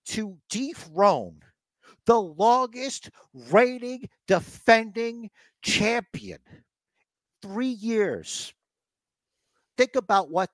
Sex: male